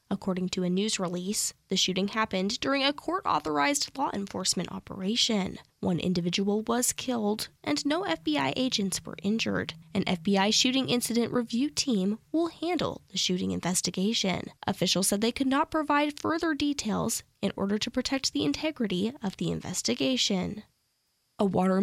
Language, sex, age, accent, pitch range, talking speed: English, female, 10-29, American, 200-310 Hz, 150 wpm